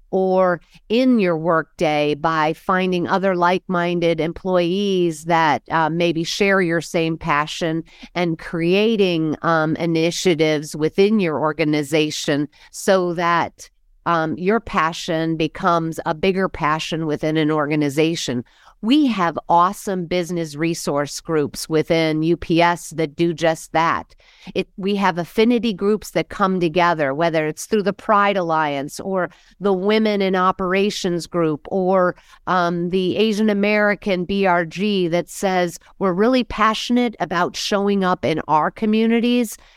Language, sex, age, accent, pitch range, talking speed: English, female, 50-69, American, 165-200 Hz, 125 wpm